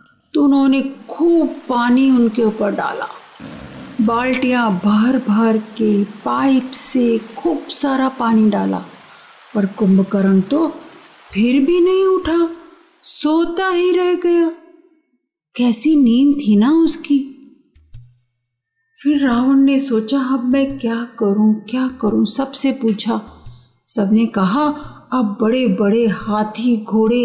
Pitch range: 215-285 Hz